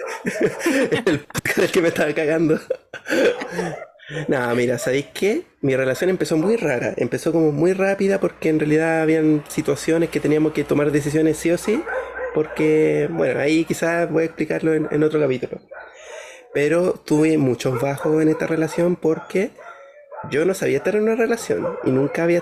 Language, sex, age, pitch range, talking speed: Spanish, male, 20-39, 145-185 Hz, 165 wpm